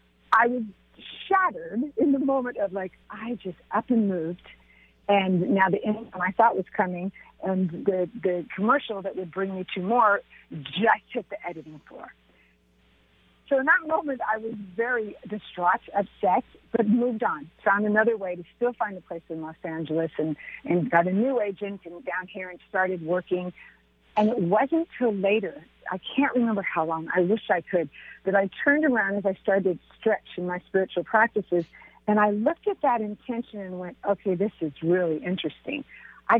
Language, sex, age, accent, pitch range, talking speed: English, female, 50-69, American, 180-230 Hz, 185 wpm